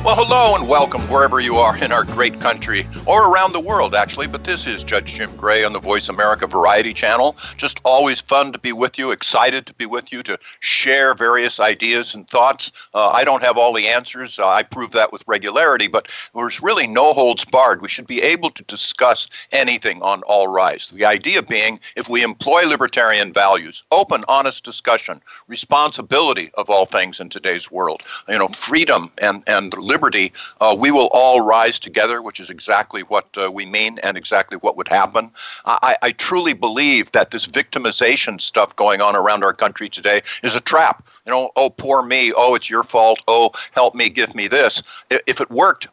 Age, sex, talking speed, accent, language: 50-69, male, 200 wpm, American, English